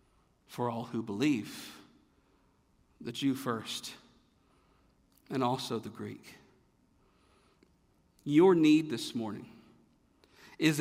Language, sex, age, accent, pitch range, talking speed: English, male, 50-69, American, 155-225 Hz, 90 wpm